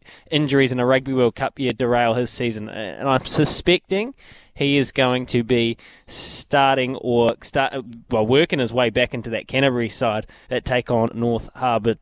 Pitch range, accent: 120-150 Hz, Australian